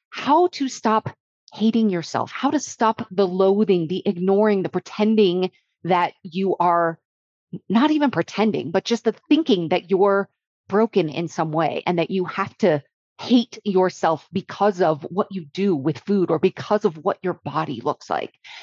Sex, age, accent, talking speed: female, 30-49, American, 170 wpm